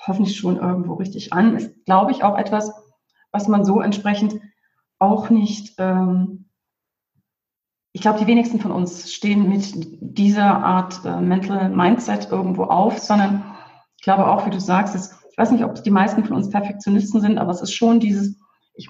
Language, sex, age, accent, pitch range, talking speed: German, female, 30-49, German, 185-215 Hz, 180 wpm